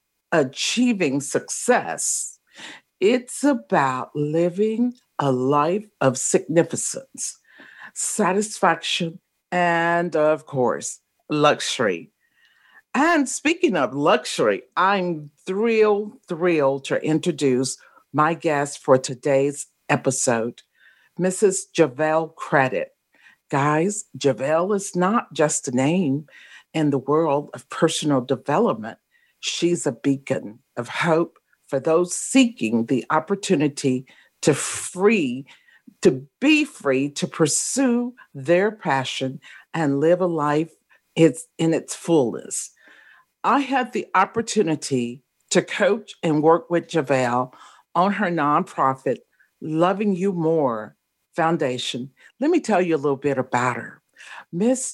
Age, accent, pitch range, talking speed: 50-69, American, 140-200 Hz, 105 wpm